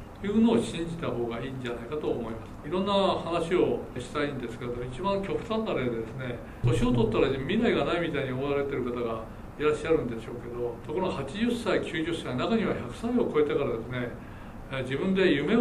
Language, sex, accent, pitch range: Japanese, male, native, 120-180 Hz